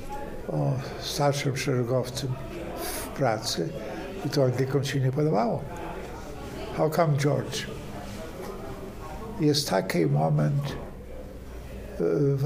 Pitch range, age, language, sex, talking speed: 130-155 Hz, 60-79, Polish, male, 85 wpm